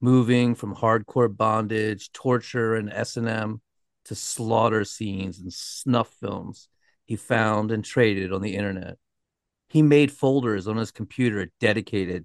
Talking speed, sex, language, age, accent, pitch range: 135 wpm, male, English, 40-59, American, 100-120 Hz